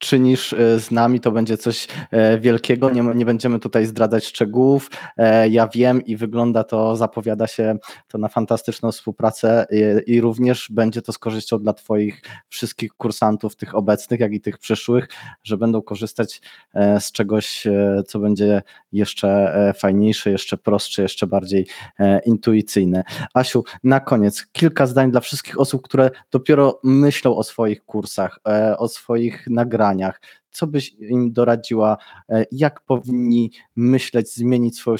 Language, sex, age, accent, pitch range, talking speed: Polish, male, 20-39, native, 110-125 Hz, 140 wpm